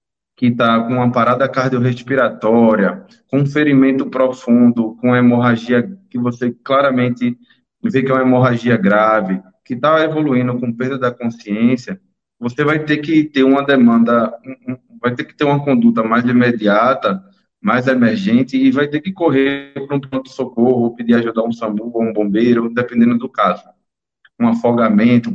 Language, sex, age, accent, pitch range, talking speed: Portuguese, male, 20-39, Brazilian, 115-140 Hz, 160 wpm